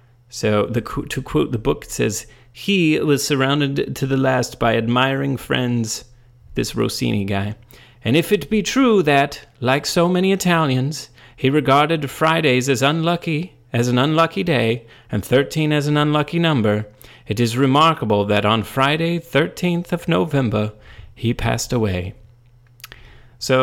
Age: 30-49